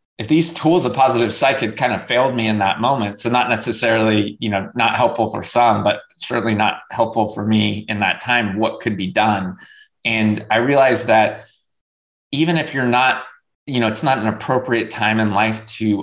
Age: 20-39